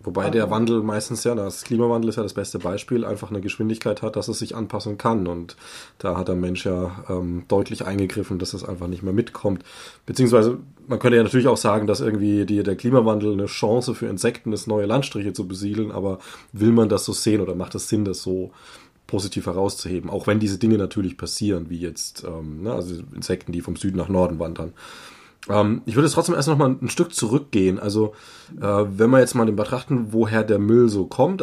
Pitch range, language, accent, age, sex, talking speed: 100-115 Hz, German, German, 20-39, male, 205 wpm